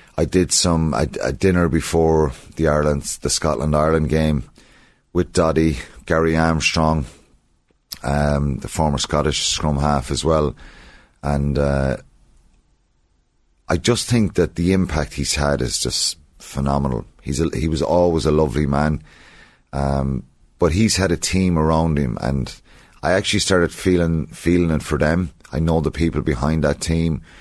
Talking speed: 150 wpm